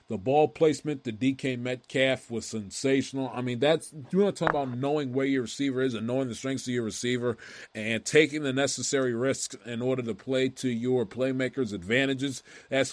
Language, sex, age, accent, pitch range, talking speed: English, male, 30-49, American, 125-145 Hz, 195 wpm